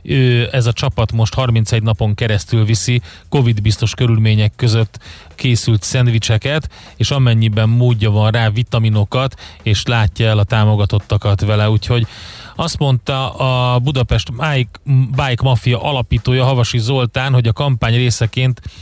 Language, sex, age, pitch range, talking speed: Hungarian, male, 30-49, 110-130 Hz, 125 wpm